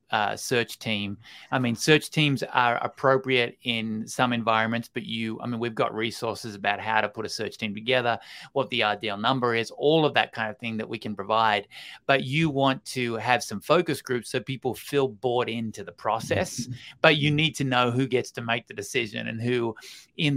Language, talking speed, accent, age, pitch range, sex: English, 210 wpm, Australian, 30-49, 110-135 Hz, male